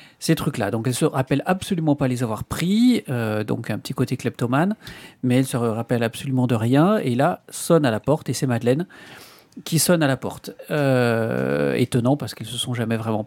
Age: 40-59